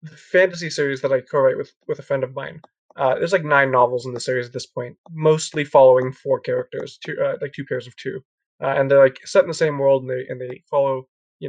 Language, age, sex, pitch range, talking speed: English, 20-39, male, 135-180 Hz, 255 wpm